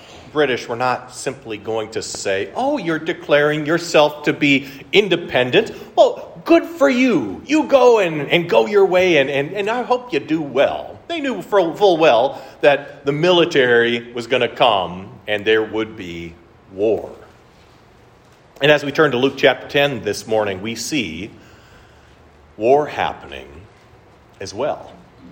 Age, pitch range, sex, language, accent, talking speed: 40-59, 115-170 Hz, male, English, American, 155 wpm